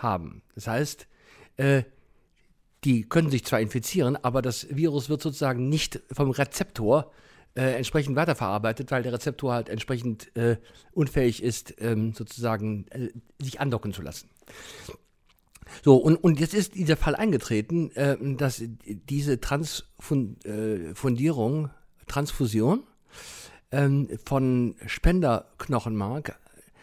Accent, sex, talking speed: German, male, 115 wpm